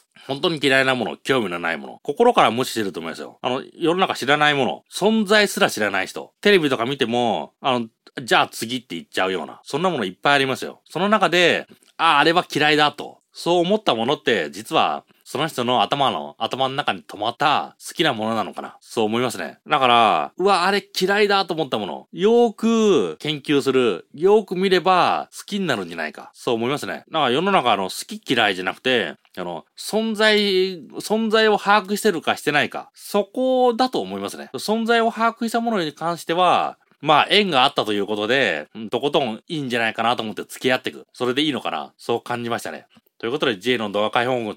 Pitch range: 125-205 Hz